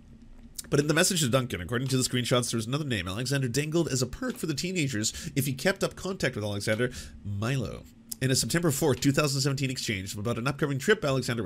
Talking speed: 215 wpm